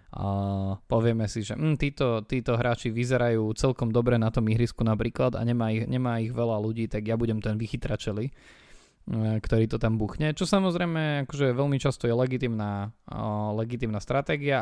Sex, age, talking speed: male, 20-39, 175 wpm